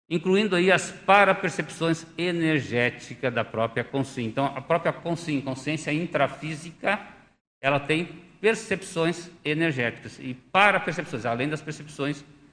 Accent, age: Brazilian, 60-79